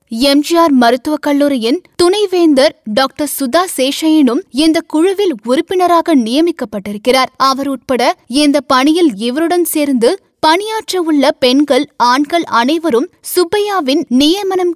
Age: 20-39